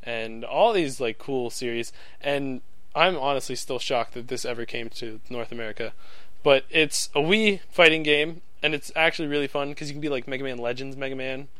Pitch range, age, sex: 120-145 Hz, 20-39, male